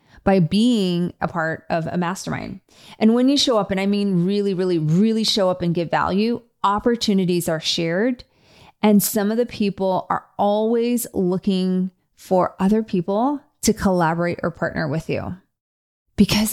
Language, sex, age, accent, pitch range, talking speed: English, female, 30-49, American, 170-210 Hz, 160 wpm